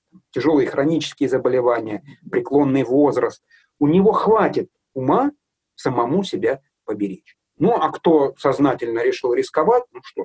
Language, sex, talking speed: Russian, male, 115 wpm